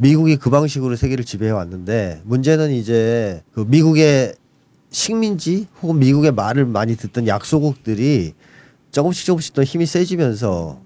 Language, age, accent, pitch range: Korean, 40-59, native, 110-150 Hz